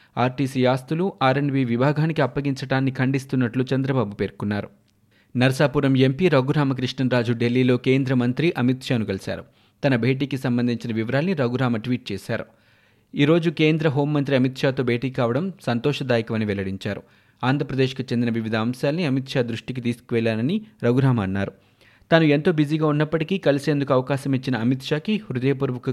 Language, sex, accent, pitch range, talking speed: Telugu, male, native, 120-145 Hz, 125 wpm